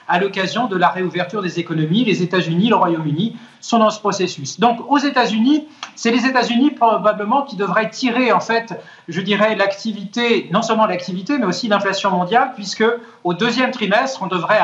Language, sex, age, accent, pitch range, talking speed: French, male, 40-59, French, 185-235 Hz, 175 wpm